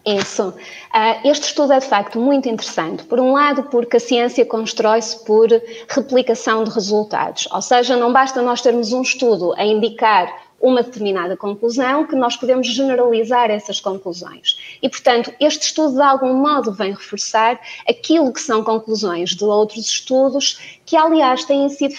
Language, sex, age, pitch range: Portuguese, female, 20-39, 220-275 Hz